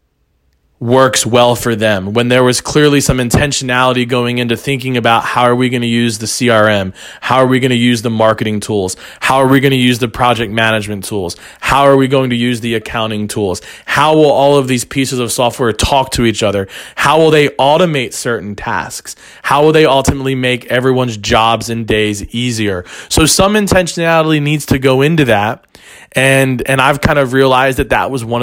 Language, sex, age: English, male, 20-39